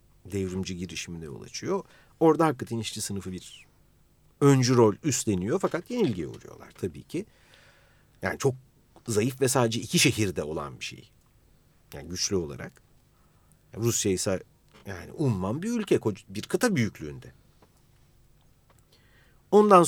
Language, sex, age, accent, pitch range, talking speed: Turkish, male, 50-69, native, 105-155 Hz, 120 wpm